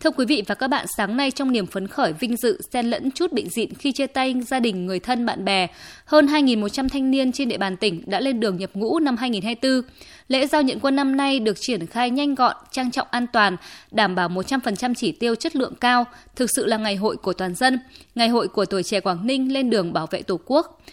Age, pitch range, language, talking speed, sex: 20-39, 215-270 Hz, Vietnamese, 250 wpm, female